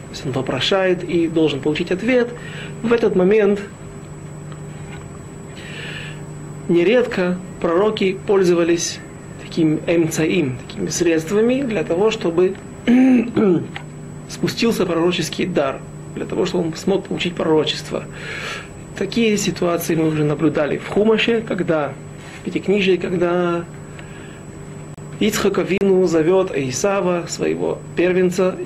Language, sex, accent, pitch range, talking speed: Russian, male, native, 160-200 Hz, 100 wpm